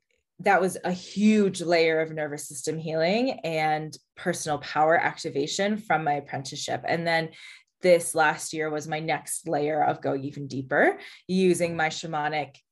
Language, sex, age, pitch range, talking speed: English, female, 20-39, 150-180 Hz, 150 wpm